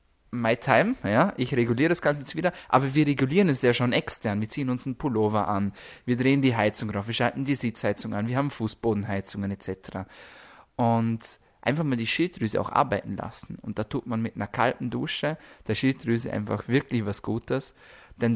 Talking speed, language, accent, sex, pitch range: 195 wpm, German, German, male, 105-130 Hz